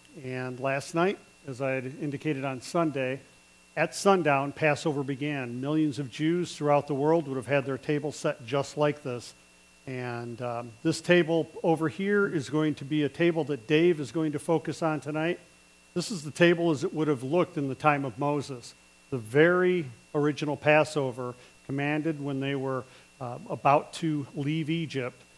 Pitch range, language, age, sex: 130-155 Hz, English, 50-69, male